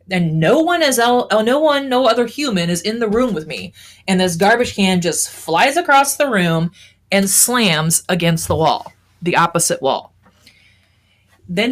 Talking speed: 160 wpm